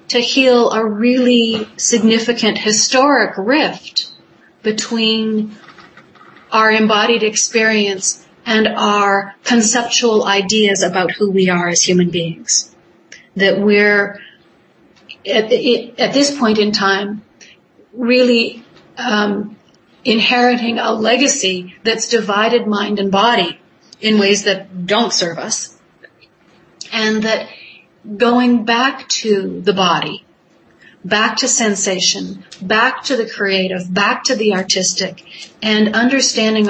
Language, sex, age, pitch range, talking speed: English, female, 40-59, 195-235 Hz, 105 wpm